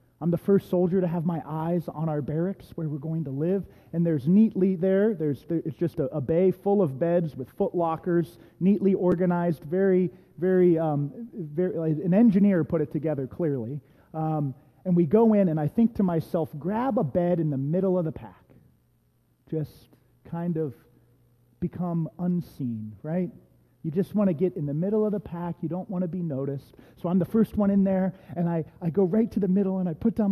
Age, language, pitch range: 30-49, English, 150-195 Hz